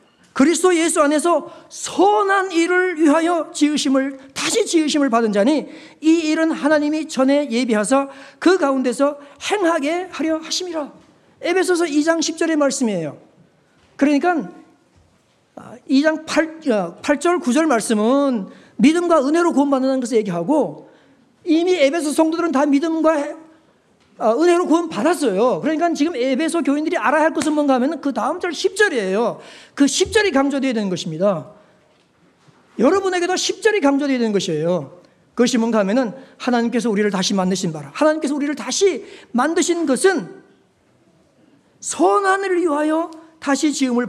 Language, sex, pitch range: Korean, male, 255-335 Hz